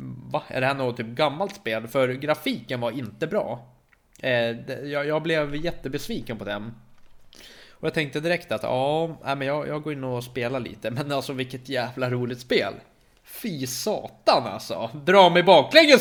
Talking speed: 170 wpm